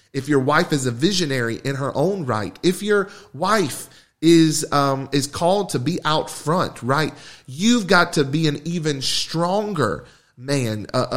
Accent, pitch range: American, 130-175 Hz